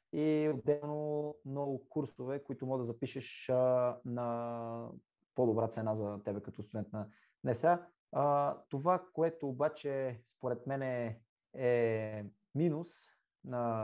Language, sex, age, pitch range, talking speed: Bulgarian, male, 20-39, 120-150 Hz, 110 wpm